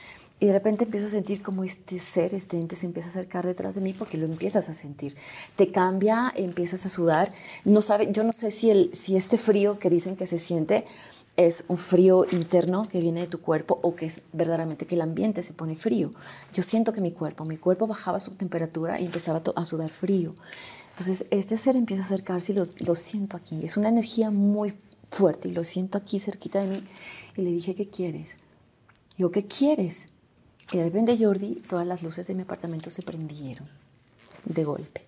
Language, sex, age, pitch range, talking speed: Spanish, female, 30-49, 165-205 Hz, 210 wpm